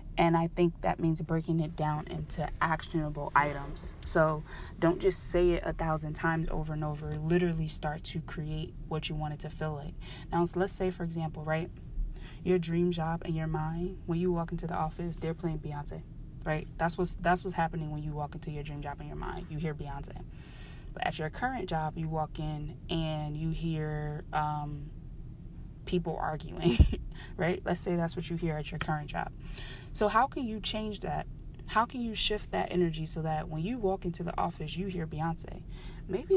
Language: English